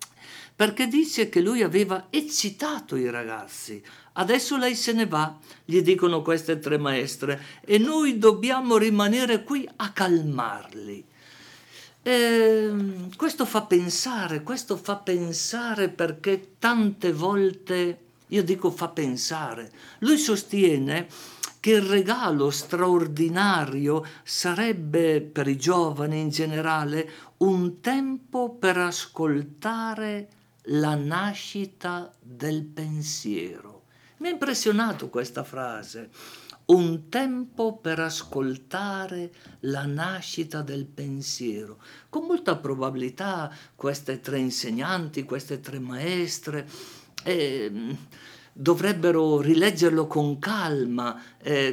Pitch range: 150-210 Hz